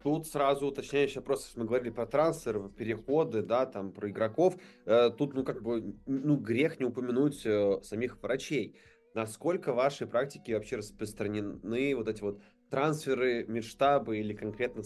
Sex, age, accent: male, 20-39, native